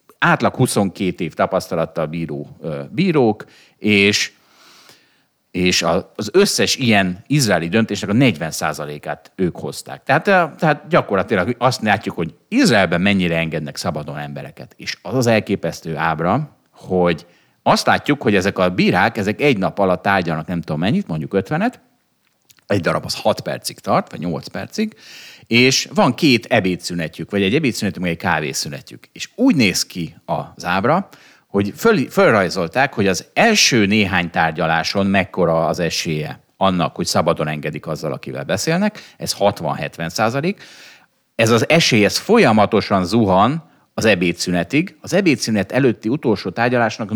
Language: Hungarian